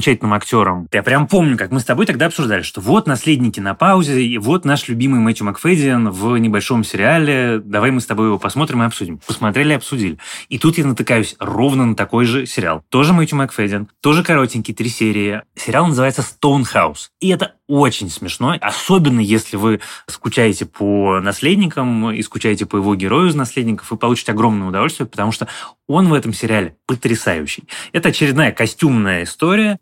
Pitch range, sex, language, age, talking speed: 105-140 Hz, male, Russian, 20-39, 175 wpm